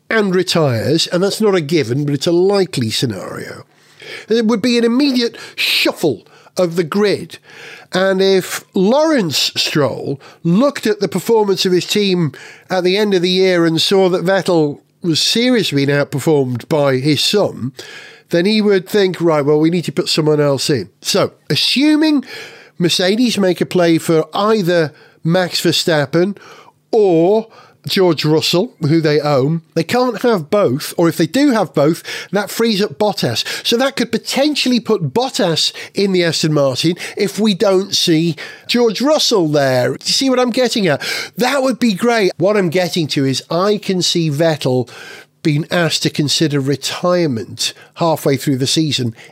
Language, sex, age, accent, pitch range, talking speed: English, male, 50-69, British, 150-210 Hz, 165 wpm